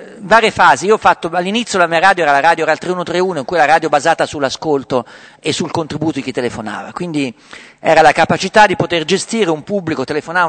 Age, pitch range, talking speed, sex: 50-69, 135-185 Hz, 210 wpm, male